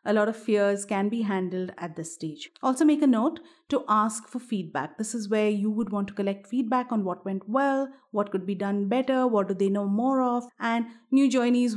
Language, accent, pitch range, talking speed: English, Indian, 200-245 Hz, 230 wpm